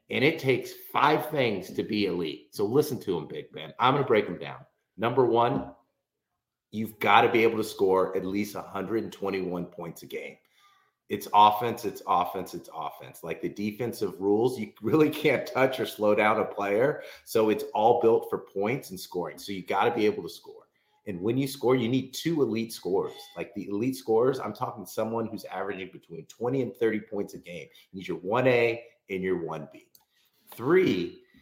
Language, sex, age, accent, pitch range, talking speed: English, male, 30-49, American, 100-165 Hz, 195 wpm